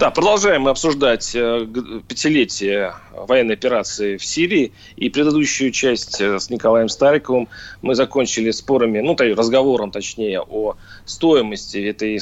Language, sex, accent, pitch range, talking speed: Russian, male, native, 110-135 Hz, 130 wpm